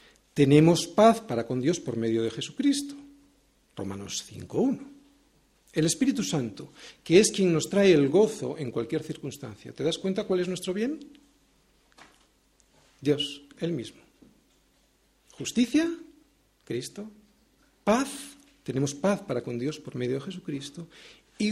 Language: Spanish